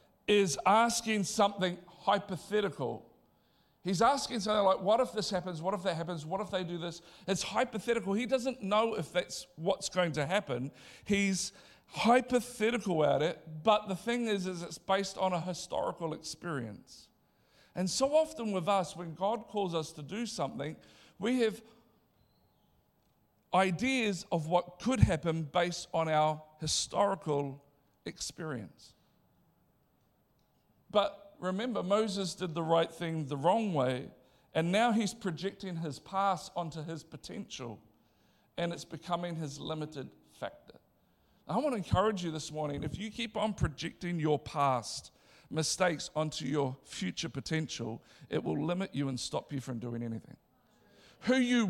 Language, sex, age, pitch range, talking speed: English, male, 50-69, 155-205 Hz, 145 wpm